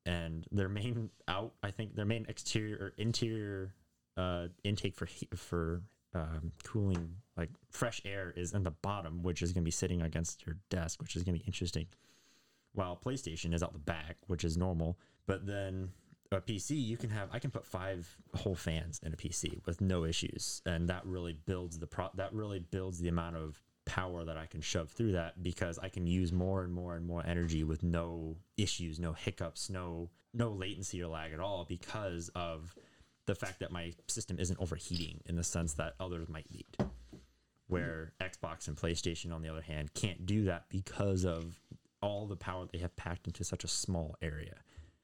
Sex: male